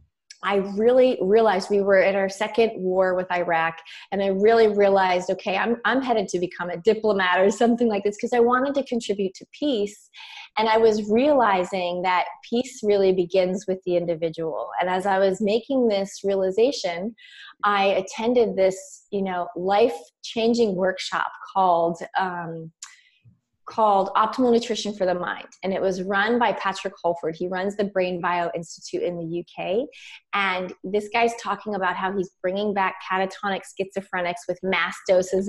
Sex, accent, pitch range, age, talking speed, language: female, American, 185-220 Hz, 20-39, 165 wpm, English